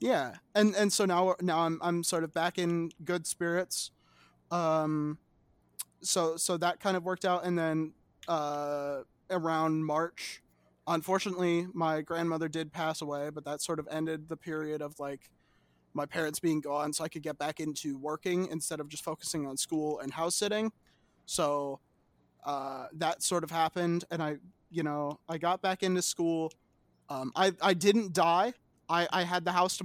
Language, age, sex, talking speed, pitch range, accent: English, 20-39, male, 180 wpm, 150-180 Hz, American